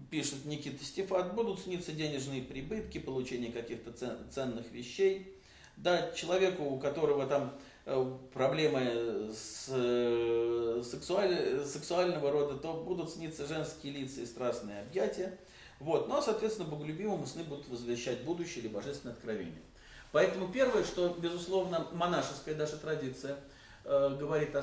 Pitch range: 130-180 Hz